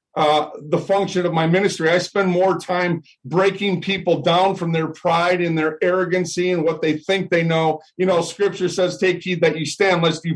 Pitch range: 175-215 Hz